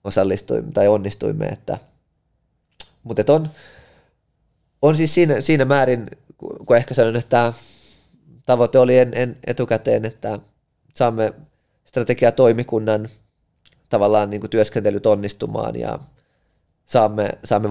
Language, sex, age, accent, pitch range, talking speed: Finnish, male, 20-39, native, 100-125 Hz, 100 wpm